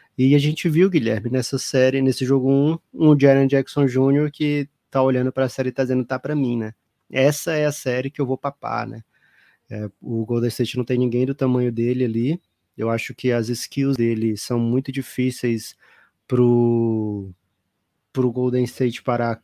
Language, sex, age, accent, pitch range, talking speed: Portuguese, male, 20-39, Brazilian, 120-140 Hz, 190 wpm